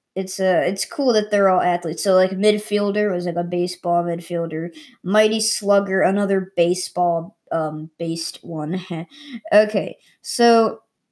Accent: American